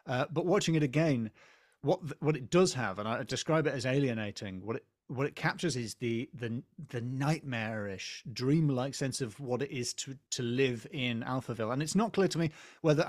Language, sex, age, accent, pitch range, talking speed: English, male, 30-49, British, 120-155 Hz, 200 wpm